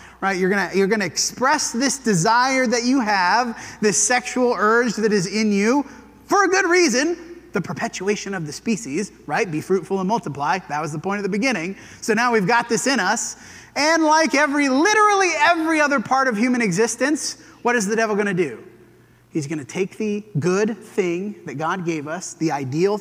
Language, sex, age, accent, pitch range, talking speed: English, male, 30-49, American, 190-250 Hz, 200 wpm